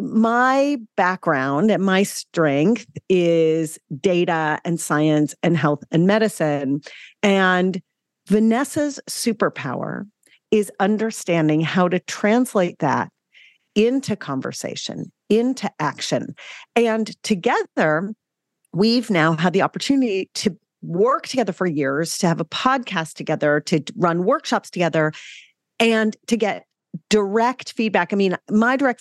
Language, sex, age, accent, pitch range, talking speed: English, female, 40-59, American, 165-220 Hz, 115 wpm